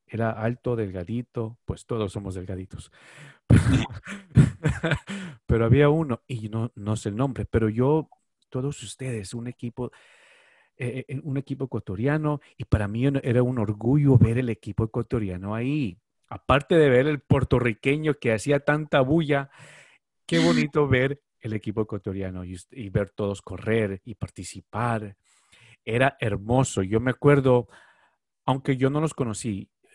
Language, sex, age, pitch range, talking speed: English, male, 40-59, 105-135 Hz, 135 wpm